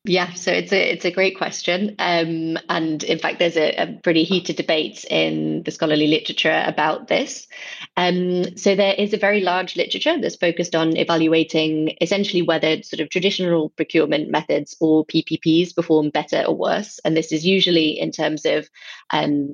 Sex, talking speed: female, 175 wpm